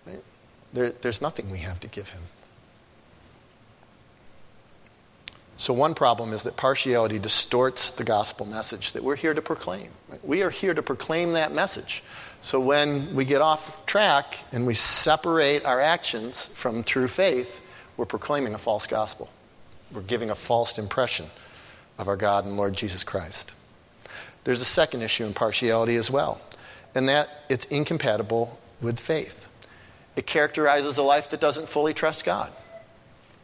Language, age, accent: English, 50-69, American